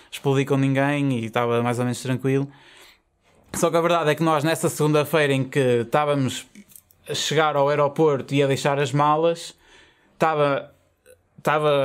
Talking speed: 160 wpm